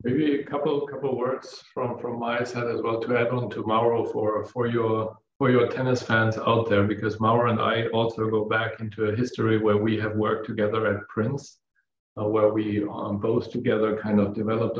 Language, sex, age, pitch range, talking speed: English, male, 40-59, 110-120 Hz, 205 wpm